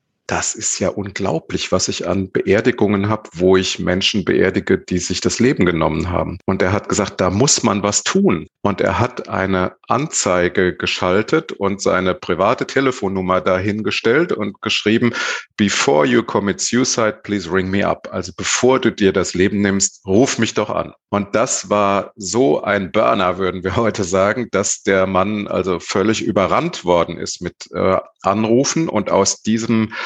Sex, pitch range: male, 90-110 Hz